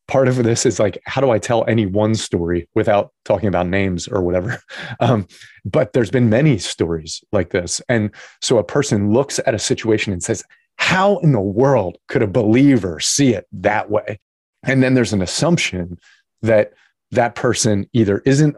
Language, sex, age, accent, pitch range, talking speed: English, male, 30-49, American, 105-130 Hz, 185 wpm